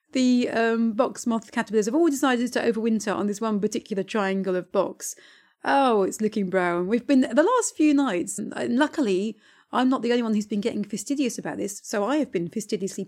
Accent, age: British, 30-49